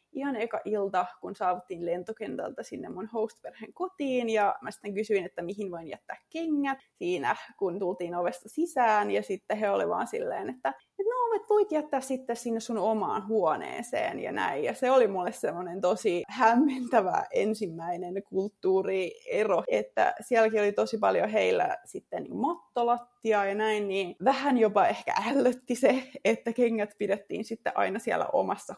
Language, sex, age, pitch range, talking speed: Finnish, female, 20-39, 195-265 Hz, 155 wpm